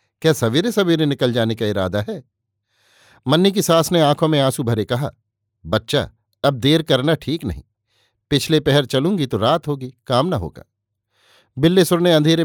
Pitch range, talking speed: 110-150 Hz, 170 wpm